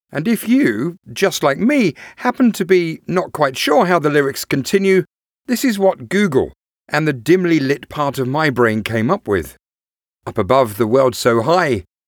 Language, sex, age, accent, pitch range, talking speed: English, male, 40-59, British, 115-175 Hz, 185 wpm